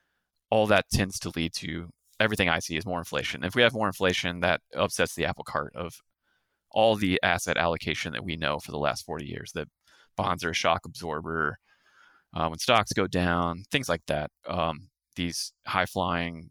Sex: male